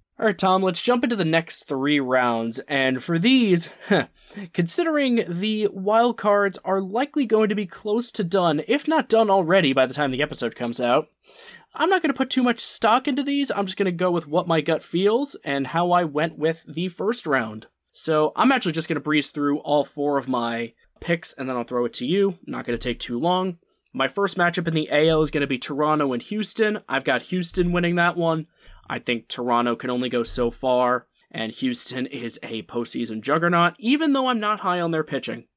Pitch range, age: 135-195 Hz, 20-39